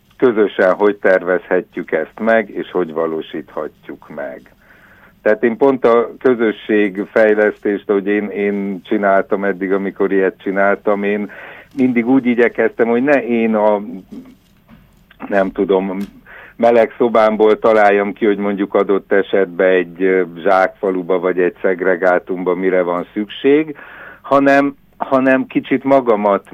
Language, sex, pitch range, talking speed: Hungarian, male, 95-120 Hz, 120 wpm